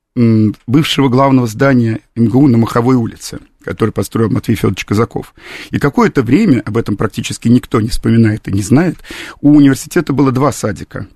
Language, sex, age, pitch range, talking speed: Russian, male, 50-69, 110-135 Hz, 155 wpm